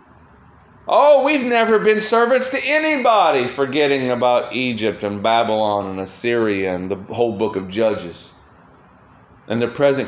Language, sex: English, male